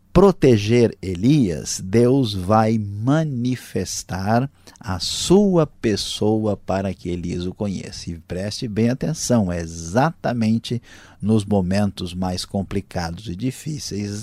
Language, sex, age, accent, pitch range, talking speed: Portuguese, male, 50-69, Brazilian, 110-145 Hz, 105 wpm